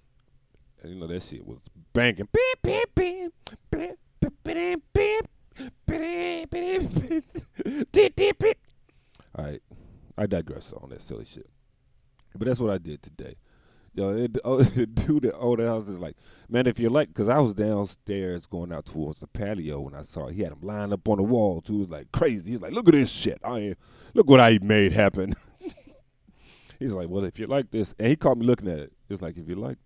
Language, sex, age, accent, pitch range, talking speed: English, male, 40-59, American, 90-140 Hz, 185 wpm